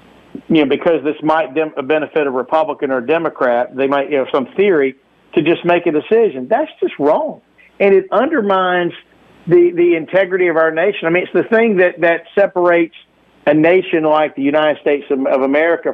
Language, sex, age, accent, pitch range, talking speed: English, male, 50-69, American, 140-190 Hz, 195 wpm